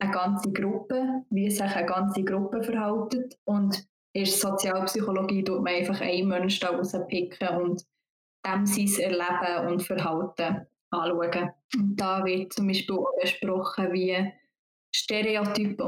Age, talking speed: 20-39, 130 wpm